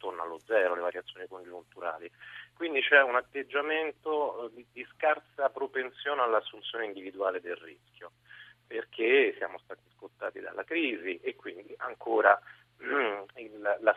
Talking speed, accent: 125 wpm, native